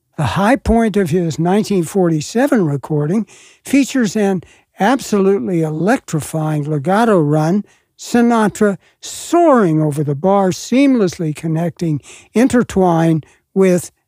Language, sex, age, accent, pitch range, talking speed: English, male, 60-79, American, 160-215 Hz, 95 wpm